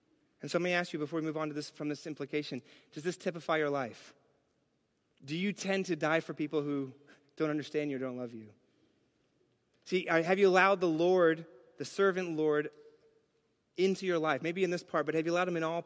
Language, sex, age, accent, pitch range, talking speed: English, male, 30-49, American, 150-195 Hz, 220 wpm